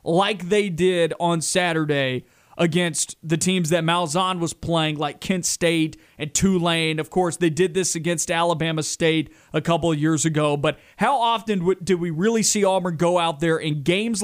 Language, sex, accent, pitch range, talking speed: English, male, American, 165-205 Hz, 180 wpm